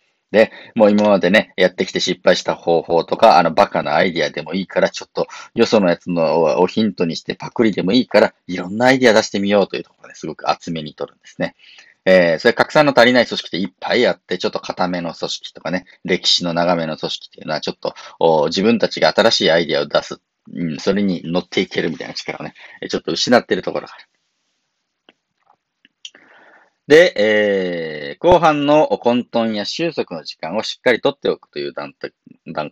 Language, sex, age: Japanese, male, 40-59